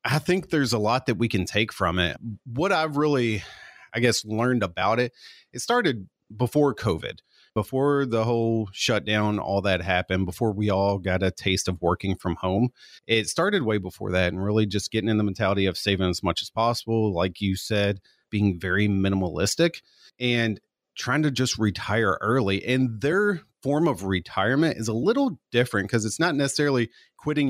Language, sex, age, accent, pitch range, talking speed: English, male, 30-49, American, 95-120 Hz, 185 wpm